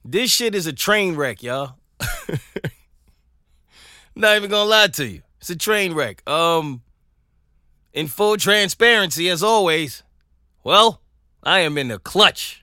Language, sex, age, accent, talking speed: English, male, 20-39, American, 140 wpm